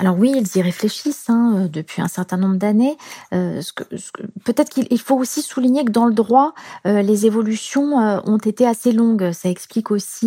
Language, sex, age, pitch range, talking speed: French, female, 30-49, 205-245 Hz, 185 wpm